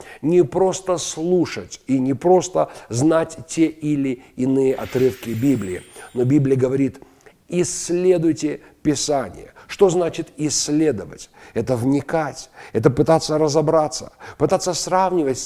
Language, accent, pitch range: Russian, native, 125-170 Hz